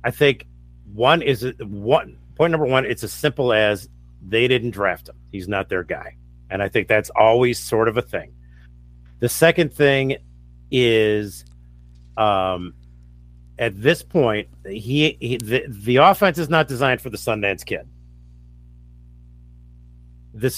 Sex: male